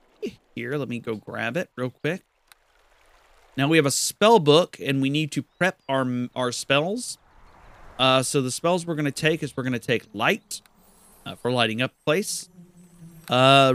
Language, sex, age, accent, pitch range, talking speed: English, male, 30-49, American, 120-165 Hz, 185 wpm